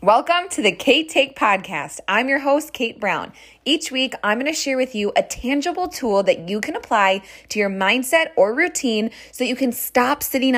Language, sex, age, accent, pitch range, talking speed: English, female, 20-39, American, 205-260 Hz, 200 wpm